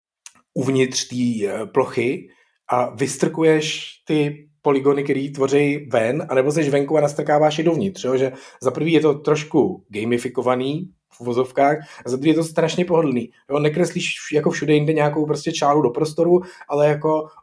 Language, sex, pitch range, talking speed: Czech, male, 130-155 Hz, 150 wpm